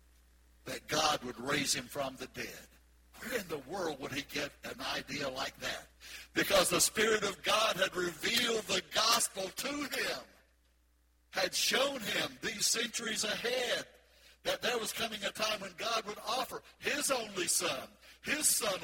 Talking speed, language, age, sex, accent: 160 wpm, English, 60-79, male, American